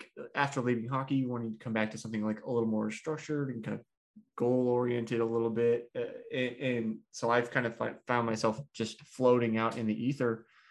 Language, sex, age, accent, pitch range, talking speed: English, male, 20-39, American, 115-135 Hz, 215 wpm